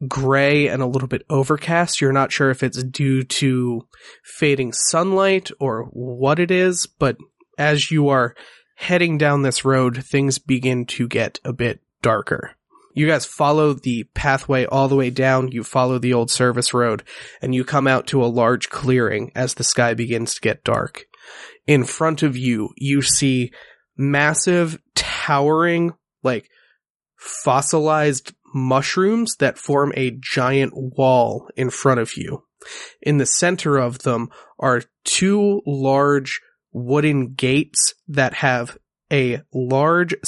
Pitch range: 130-150 Hz